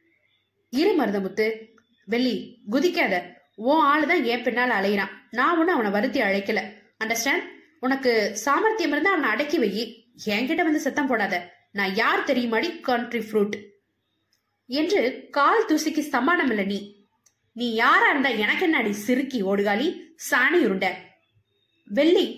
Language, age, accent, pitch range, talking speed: Tamil, 20-39, native, 210-310 Hz, 120 wpm